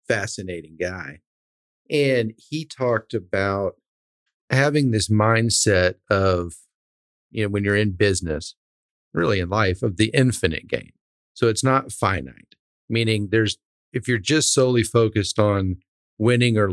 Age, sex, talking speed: 50-69, male, 135 wpm